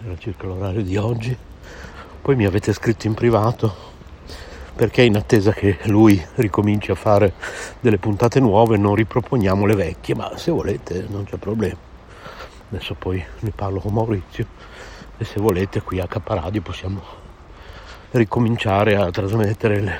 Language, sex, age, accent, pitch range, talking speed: Italian, male, 60-79, native, 95-115 Hz, 140 wpm